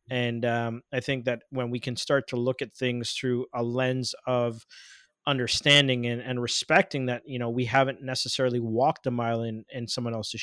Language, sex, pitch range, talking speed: English, male, 120-140 Hz, 195 wpm